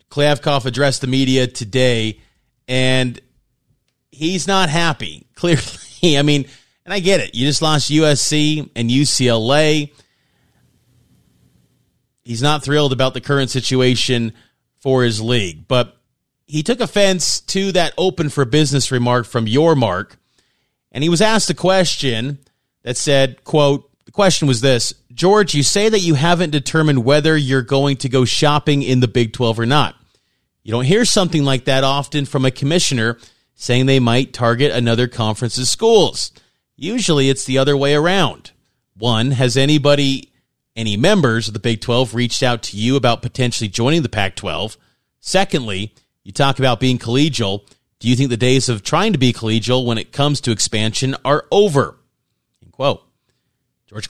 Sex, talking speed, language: male, 160 wpm, English